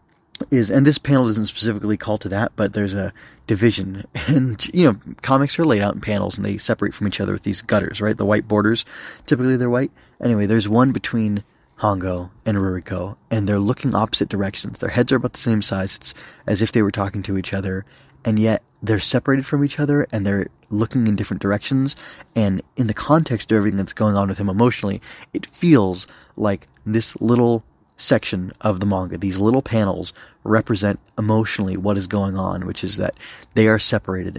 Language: English